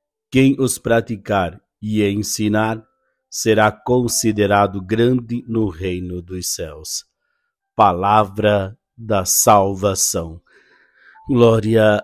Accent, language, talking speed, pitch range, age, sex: Brazilian, Portuguese, 80 wpm, 100-125 Hz, 60-79, male